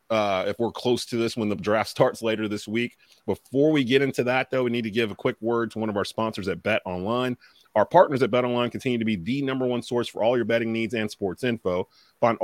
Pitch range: 105-125 Hz